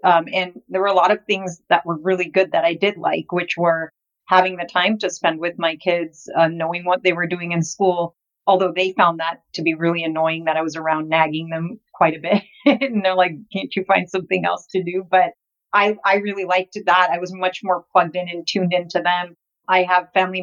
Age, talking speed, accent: 40-59, 235 wpm, American